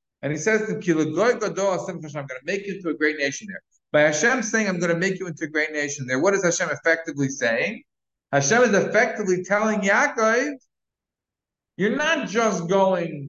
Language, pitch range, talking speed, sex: English, 145-205 Hz, 190 wpm, male